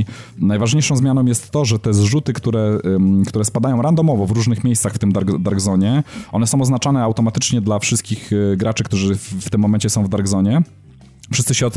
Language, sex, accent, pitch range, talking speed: Polish, male, native, 105-125 Hz, 185 wpm